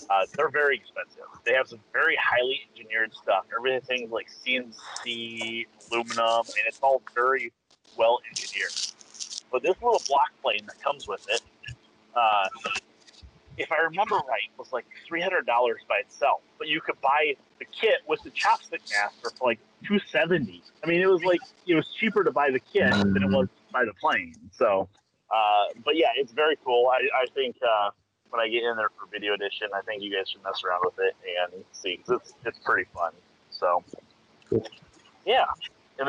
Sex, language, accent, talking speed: male, English, American, 185 wpm